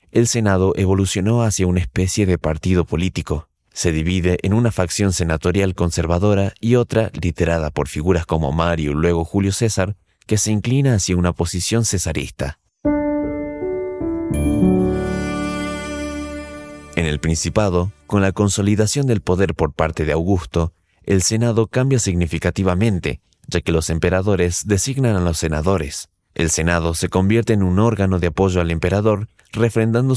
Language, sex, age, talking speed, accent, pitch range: Spanish, male, 30-49, 140 wpm, Mexican, 85-105 Hz